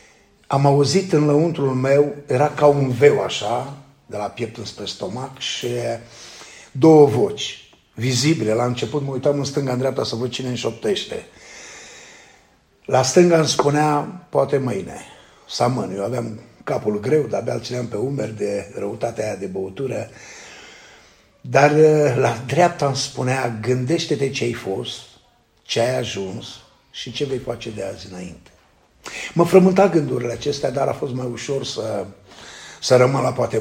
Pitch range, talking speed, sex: 120-150 Hz, 150 wpm, male